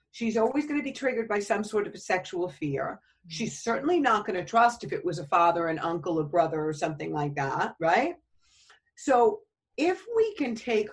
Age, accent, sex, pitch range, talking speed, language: 50-69, American, female, 185-295 Hz, 210 wpm, English